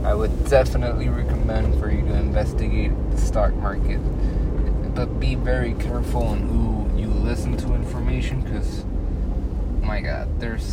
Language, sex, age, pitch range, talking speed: English, male, 20-39, 65-105 Hz, 140 wpm